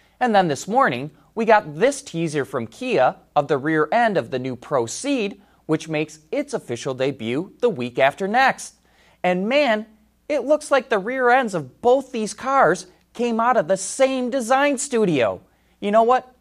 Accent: American